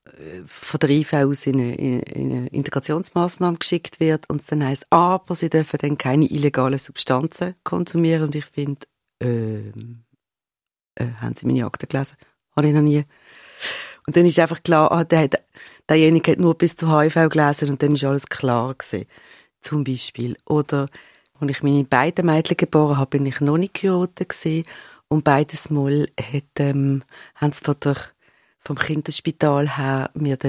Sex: female